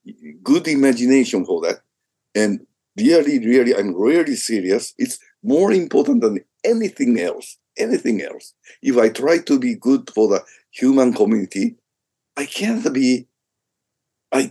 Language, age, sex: English, 60-79, male